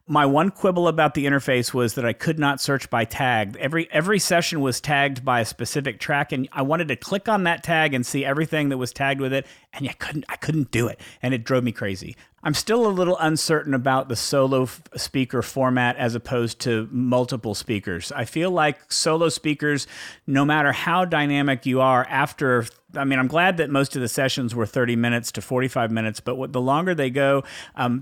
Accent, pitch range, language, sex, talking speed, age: American, 125-155 Hz, English, male, 215 wpm, 50-69